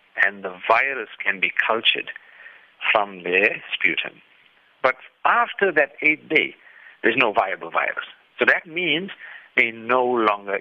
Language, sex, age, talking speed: English, male, 60-79, 135 wpm